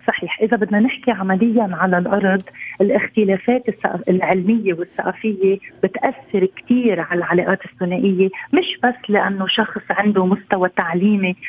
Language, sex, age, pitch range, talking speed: Arabic, female, 30-49, 190-225 Hz, 115 wpm